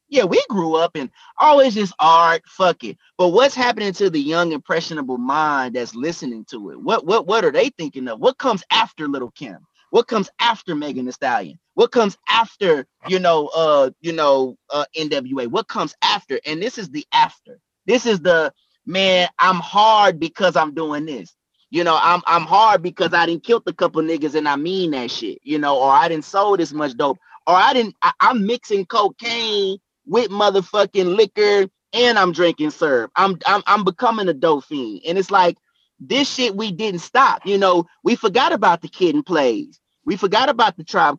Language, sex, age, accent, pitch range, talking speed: English, male, 30-49, American, 170-235 Hz, 195 wpm